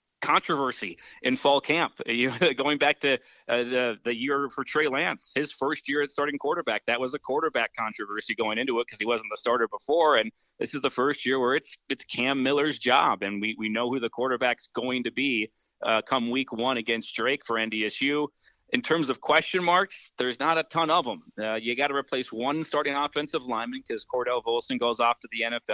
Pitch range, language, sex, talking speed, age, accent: 120-140 Hz, English, male, 215 wpm, 30-49, American